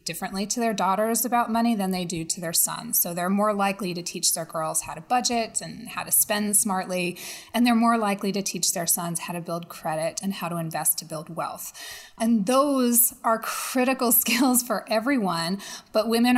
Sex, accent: female, American